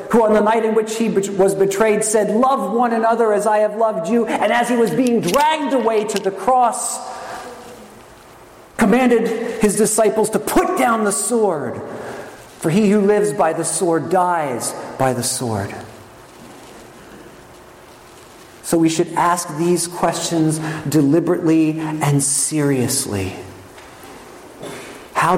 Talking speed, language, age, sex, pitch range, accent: 135 wpm, English, 50-69, male, 135-210 Hz, American